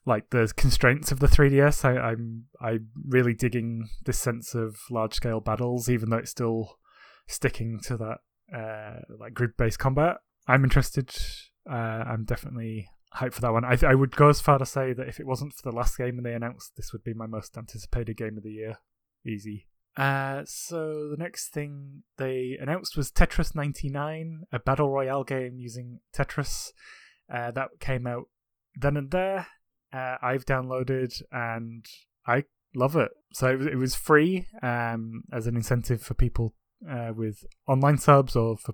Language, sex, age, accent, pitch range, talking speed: English, male, 20-39, British, 115-135 Hz, 175 wpm